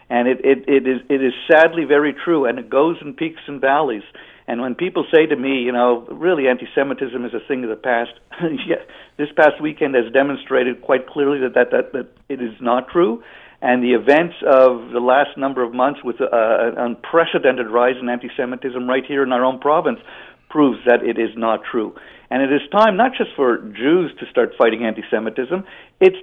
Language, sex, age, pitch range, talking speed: English, male, 50-69, 125-165 Hz, 205 wpm